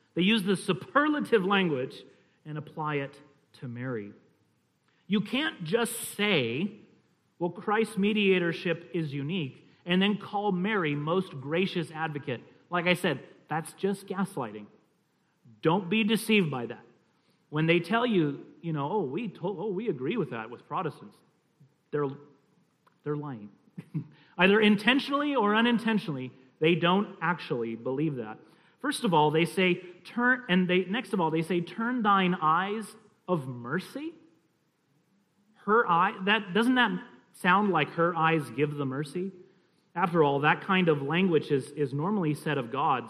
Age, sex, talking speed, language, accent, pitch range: 40-59, male, 150 wpm, English, American, 150-200 Hz